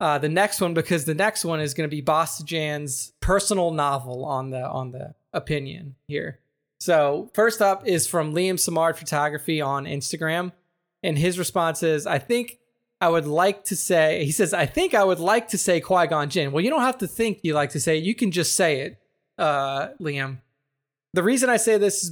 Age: 20-39